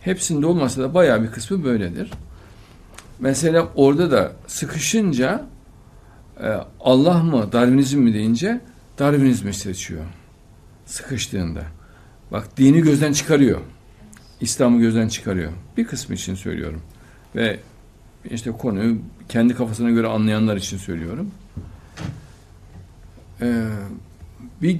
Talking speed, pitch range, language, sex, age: 95 wpm, 100-140 Hz, Turkish, male, 60-79